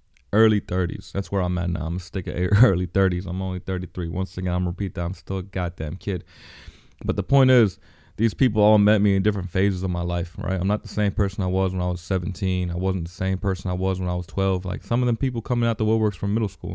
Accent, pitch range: American, 90-105 Hz